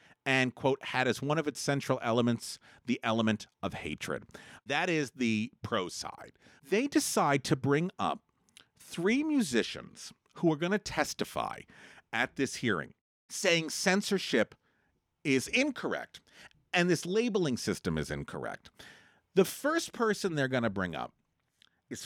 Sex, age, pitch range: male, 50-69, 110-175 Hz